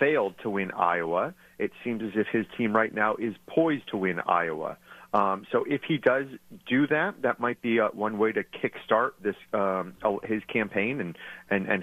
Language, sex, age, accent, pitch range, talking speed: English, male, 30-49, American, 100-130 Hz, 190 wpm